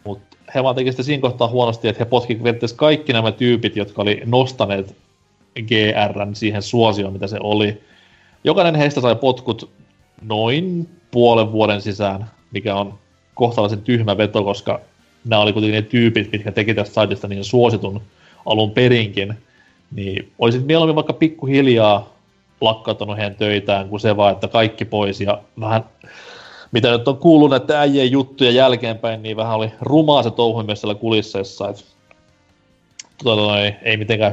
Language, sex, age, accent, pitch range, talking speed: Finnish, male, 30-49, native, 105-125 Hz, 145 wpm